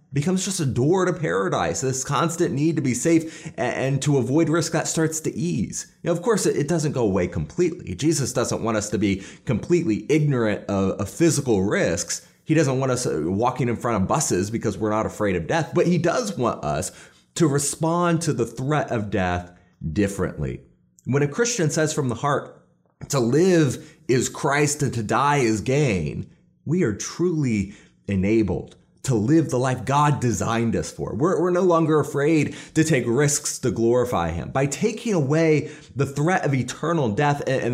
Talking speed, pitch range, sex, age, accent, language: 185 wpm, 115-165 Hz, male, 30-49, American, English